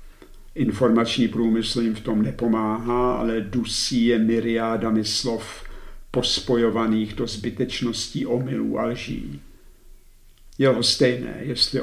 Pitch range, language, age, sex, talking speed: 110-130 Hz, Czech, 60-79, male, 100 wpm